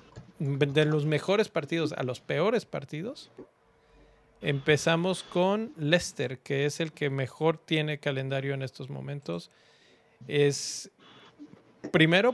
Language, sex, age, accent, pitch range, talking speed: Spanish, male, 40-59, Mexican, 140-175 Hz, 110 wpm